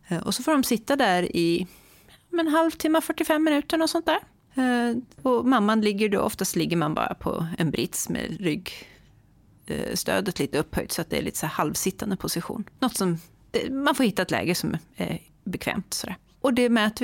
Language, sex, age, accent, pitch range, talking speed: Swedish, female, 30-49, native, 170-255 Hz, 185 wpm